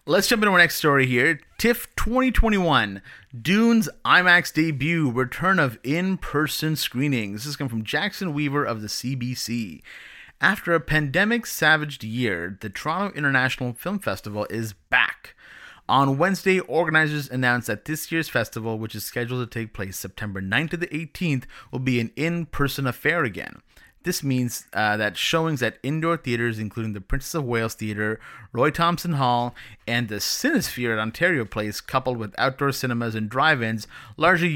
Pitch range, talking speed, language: 110-155 Hz, 160 wpm, English